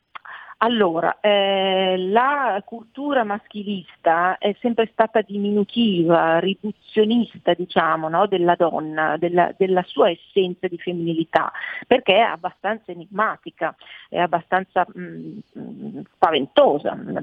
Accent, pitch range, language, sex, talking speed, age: native, 180-230 Hz, Italian, female, 105 wpm, 40-59